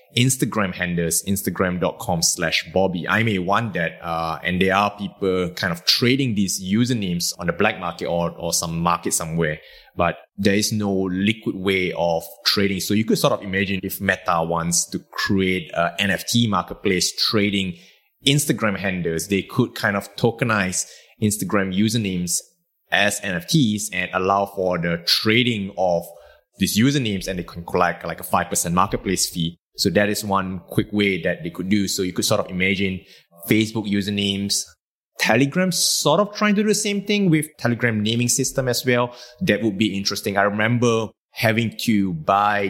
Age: 20-39